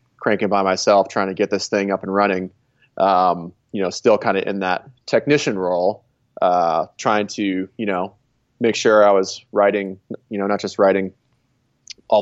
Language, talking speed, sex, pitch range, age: English, 180 wpm, male, 95-120 Hz, 20-39